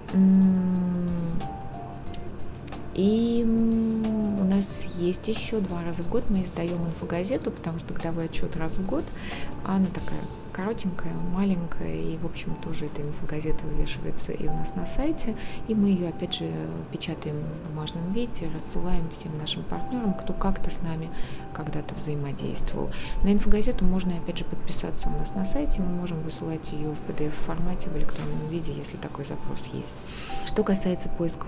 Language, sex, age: Russian, female, 20-39